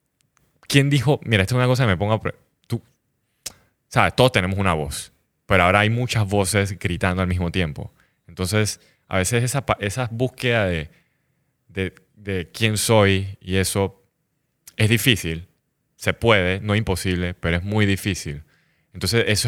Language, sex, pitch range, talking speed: Spanish, male, 95-115 Hz, 160 wpm